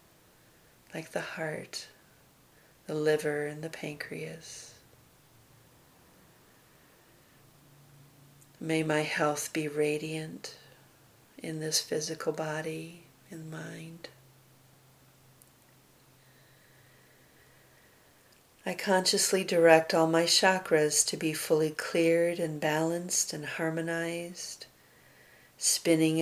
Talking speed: 80 wpm